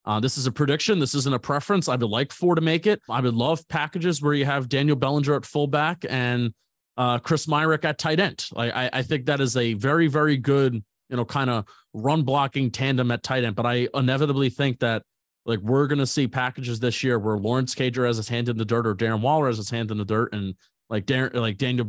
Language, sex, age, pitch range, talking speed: English, male, 30-49, 115-145 Hz, 245 wpm